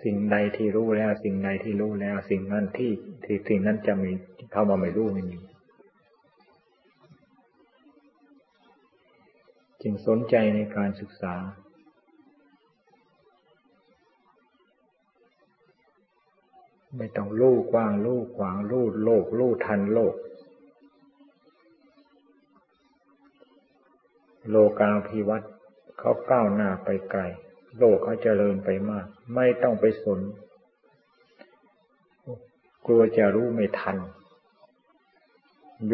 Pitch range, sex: 100-120 Hz, male